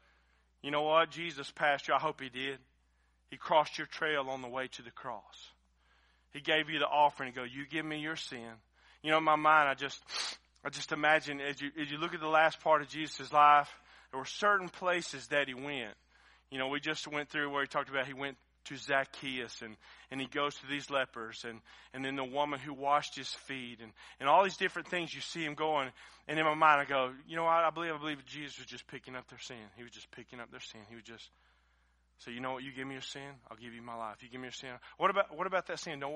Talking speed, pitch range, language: 260 wpm, 120-160 Hz, English